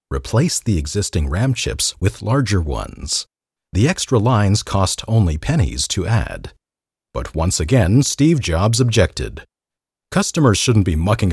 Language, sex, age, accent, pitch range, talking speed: English, male, 40-59, American, 85-125 Hz, 140 wpm